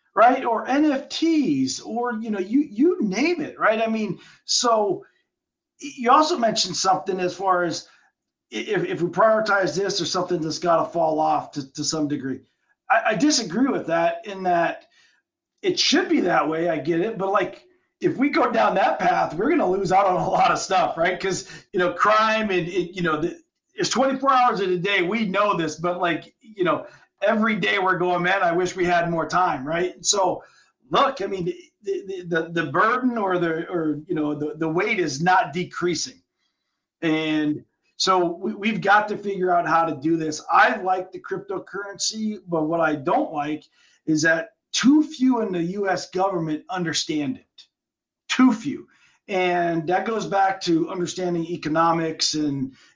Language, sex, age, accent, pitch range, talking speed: English, male, 40-59, American, 170-245 Hz, 185 wpm